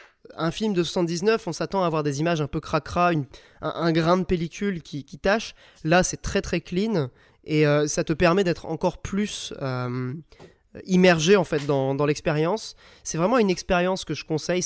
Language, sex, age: French, male, 20-39